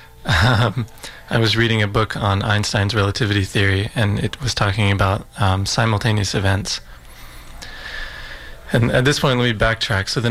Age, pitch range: 20-39, 105-120 Hz